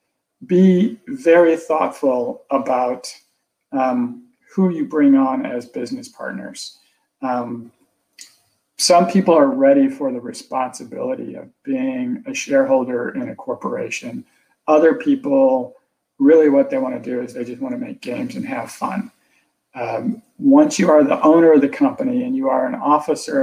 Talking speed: 150 wpm